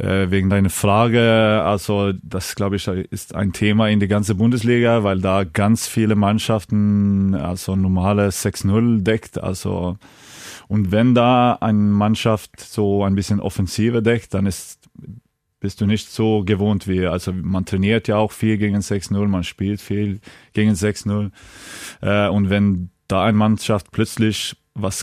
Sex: male